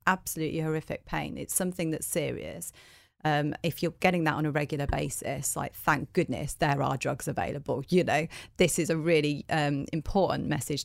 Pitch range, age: 150-175 Hz, 30-49